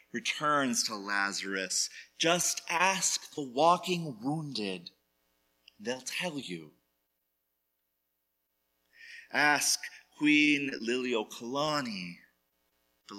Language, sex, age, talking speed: English, male, 30-49, 70 wpm